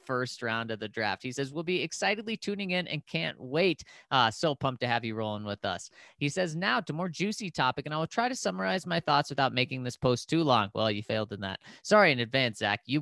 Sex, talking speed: male, 255 wpm